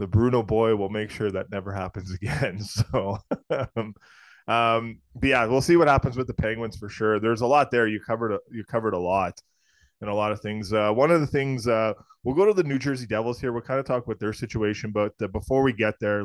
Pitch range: 100-115 Hz